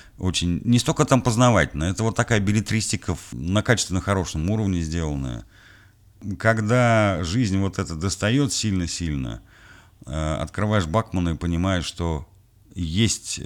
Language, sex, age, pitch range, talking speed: Russian, male, 50-69, 80-105 Hz, 115 wpm